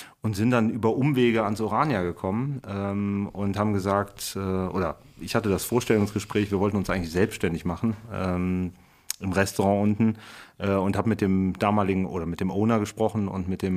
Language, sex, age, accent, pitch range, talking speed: German, male, 30-49, German, 95-110 Hz, 180 wpm